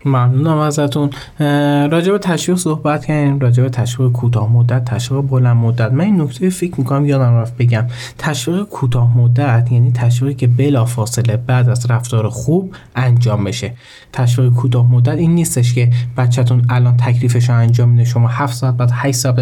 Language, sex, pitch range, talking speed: Persian, male, 120-140 Hz, 175 wpm